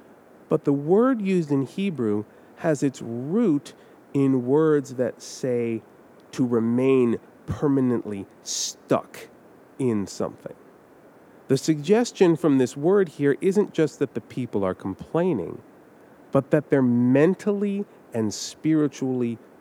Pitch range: 115-160 Hz